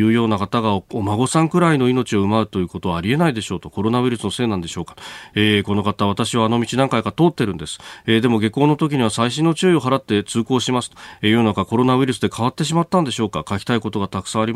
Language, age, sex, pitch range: Japanese, 40-59, male, 95-125 Hz